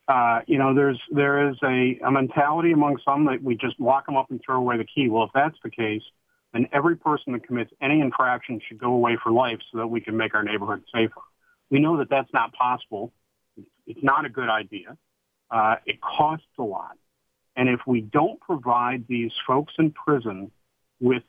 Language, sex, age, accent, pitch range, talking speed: English, male, 50-69, American, 120-155 Hz, 210 wpm